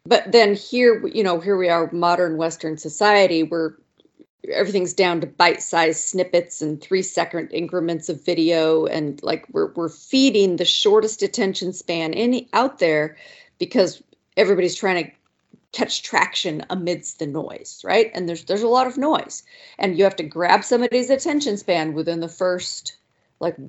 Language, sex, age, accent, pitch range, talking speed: English, female, 40-59, American, 165-210 Hz, 160 wpm